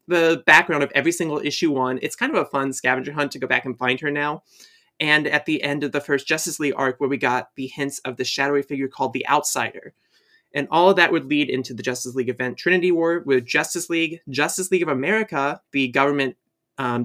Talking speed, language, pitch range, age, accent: 230 wpm, English, 135-175 Hz, 30-49, American